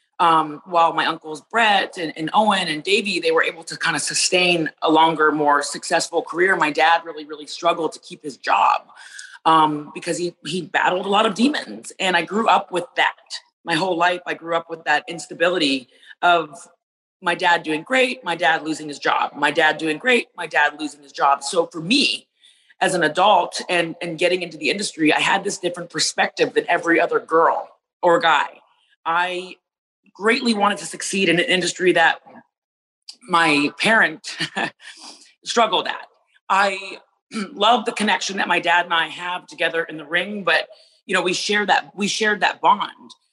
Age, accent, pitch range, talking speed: 30-49, American, 165-200 Hz, 185 wpm